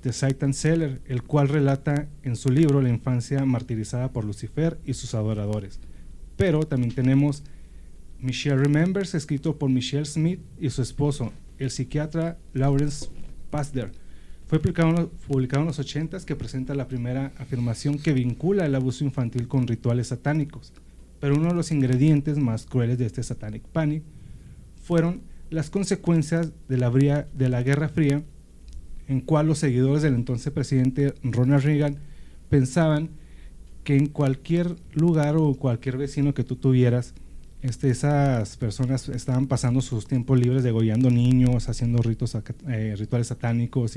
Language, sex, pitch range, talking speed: Spanish, male, 120-150 Hz, 145 wpm